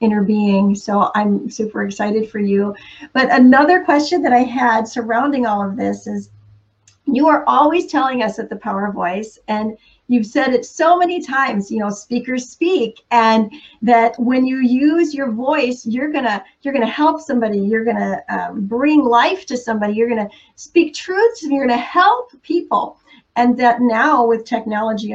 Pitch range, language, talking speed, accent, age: 210-265 Hz, English, 175 wpm, American, 40-59